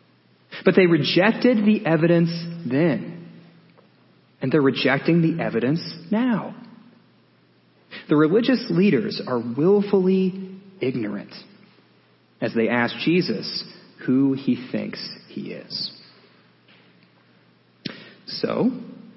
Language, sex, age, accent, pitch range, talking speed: English, male, 30-49, American, 130-215 Hz, 90 wpm